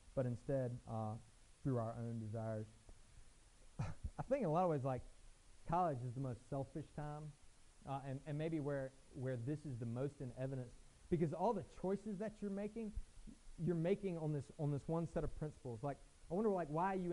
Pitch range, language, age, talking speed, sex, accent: 120-160 Hz, English, 30-49, 195 wpm, male, American